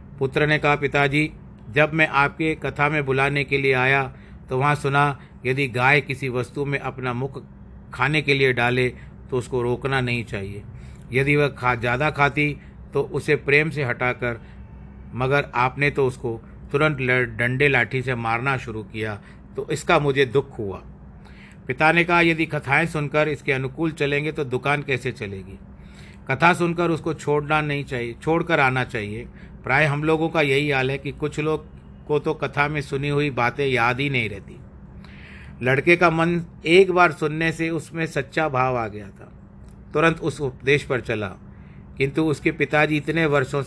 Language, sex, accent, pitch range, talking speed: Hindi, male, native, 125-150 Hz, 170 wpm